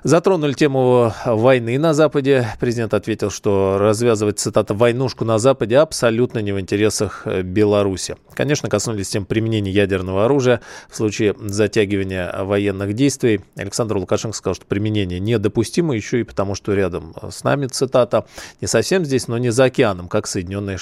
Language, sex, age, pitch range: Russian, male, 20-39, 105-130 Hz